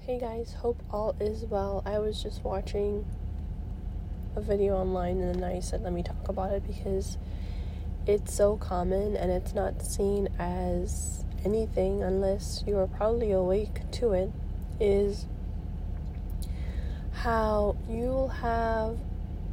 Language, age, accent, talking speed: English, 30-49, American, 130 wpm